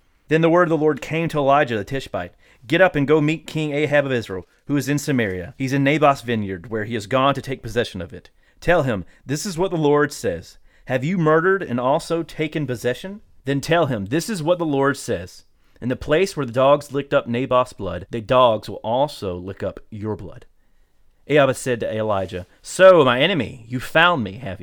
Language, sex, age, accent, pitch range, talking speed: English, male, 30-49, American, 100-140 Hz, 220 wpm